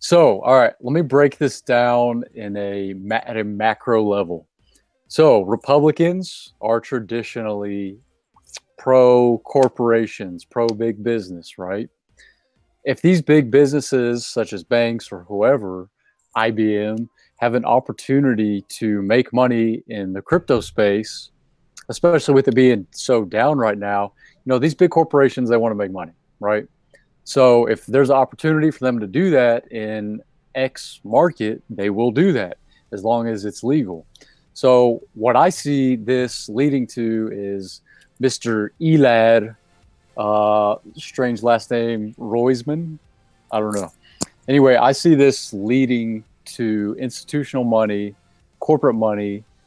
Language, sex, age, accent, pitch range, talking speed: English, male, 30-49, American, 105-130 Hz, 135 wpm